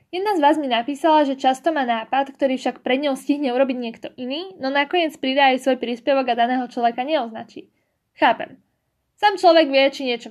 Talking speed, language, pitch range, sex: 190 wpm, Slovak, 250-300 Hz, female